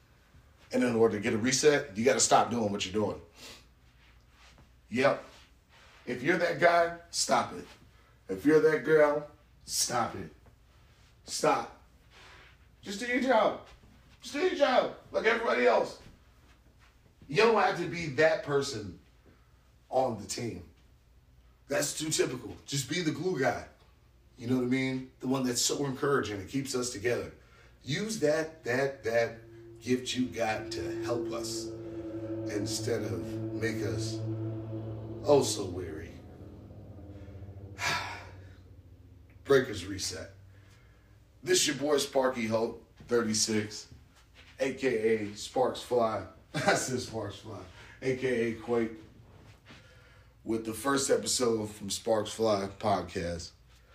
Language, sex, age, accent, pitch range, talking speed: English, male, 40-59, American, 100-130 Hz, 125 wpm